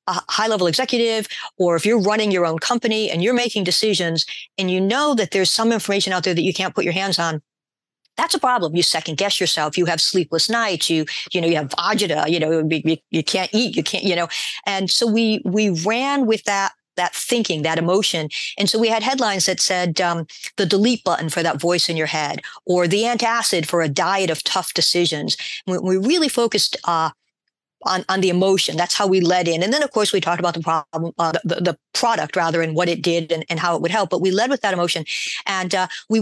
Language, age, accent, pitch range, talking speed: Dutch, 50-69, American, 170-210 Hz, 230 wpm